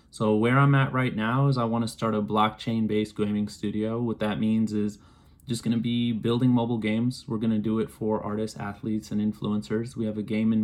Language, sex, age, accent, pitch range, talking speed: English, male, 20-39, American, 105-130 Hz, 215 wpm